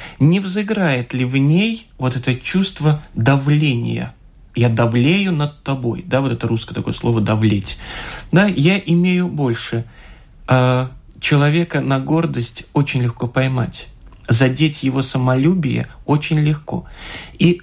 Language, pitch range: Russian, 120-155 Hz